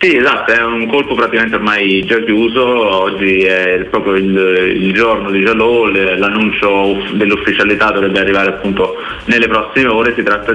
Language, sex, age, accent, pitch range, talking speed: Italian, male, 20-39, native, 95-110 Hz, 155 wpm